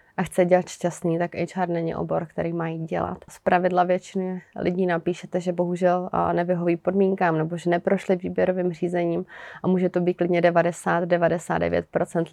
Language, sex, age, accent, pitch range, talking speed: Czech, female, 30-49, native, 170-180 Hz, 145 wpm